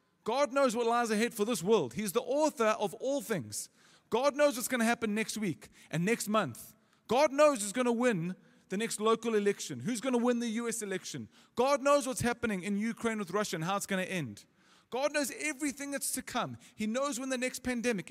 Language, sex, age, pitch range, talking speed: English, male, 30-49, 180-240 Hz, 225 wpm